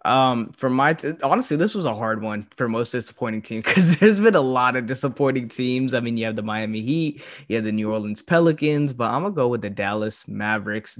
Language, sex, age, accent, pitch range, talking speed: English, male, 20-39, American, 115-145 Hz, 230 wpm